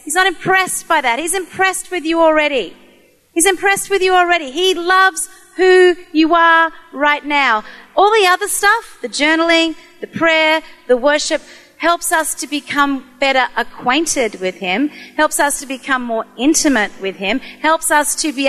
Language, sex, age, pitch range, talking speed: English, female, 40-59, 265-380 Hz, 170 wpm